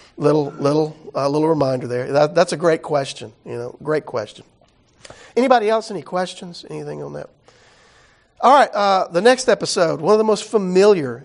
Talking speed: 180 wpm